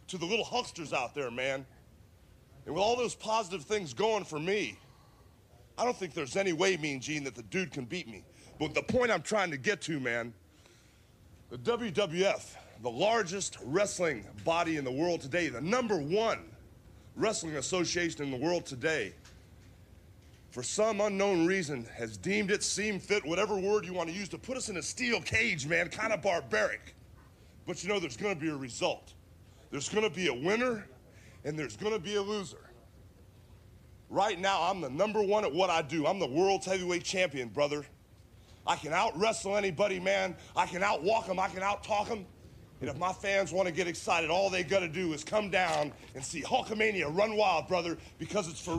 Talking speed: 195 wpm